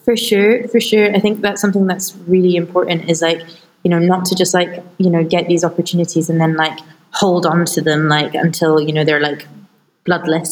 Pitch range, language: 165-195 Hz, English